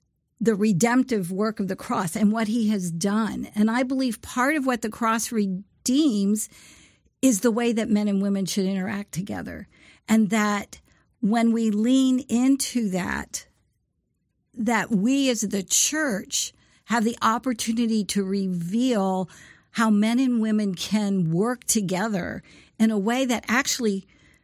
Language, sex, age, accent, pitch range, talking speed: English, female, 50-69, American, 195-235 Hz, 145 wpm